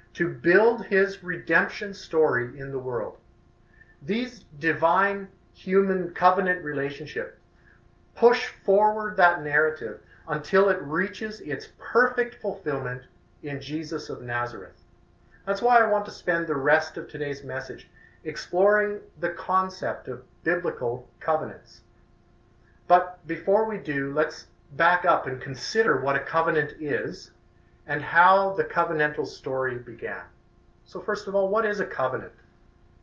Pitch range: 140-195 Hz